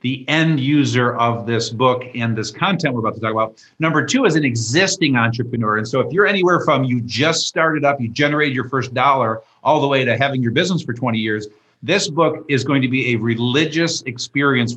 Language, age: English, 50-69